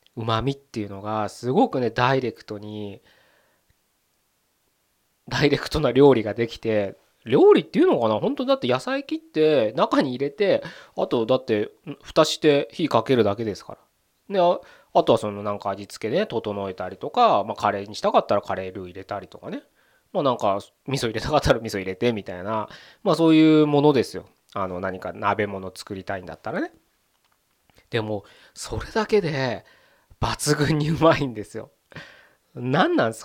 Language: Japanese